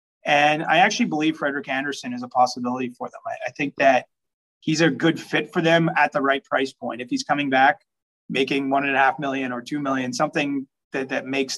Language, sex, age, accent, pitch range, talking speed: English, male, 30-49, American, 125-140 Hz, 225 wpm